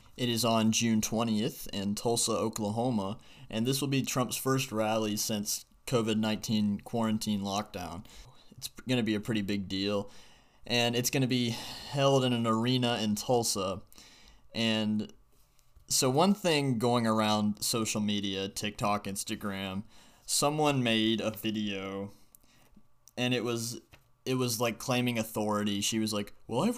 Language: English